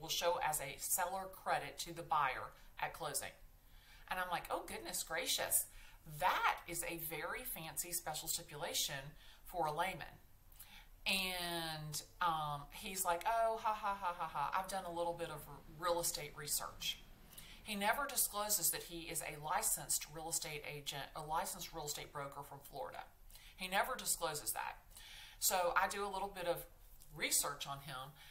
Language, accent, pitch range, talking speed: English, American, 150-180 Hz, 165 wpm